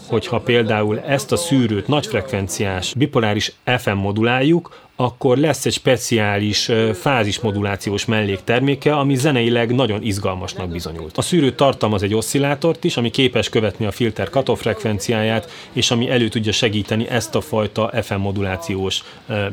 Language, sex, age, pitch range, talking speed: Hungarian, male, 30-49, 105-125 Hz, 135 wpm